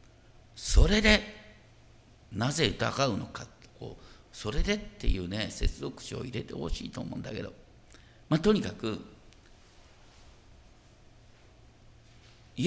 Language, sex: Japanese, male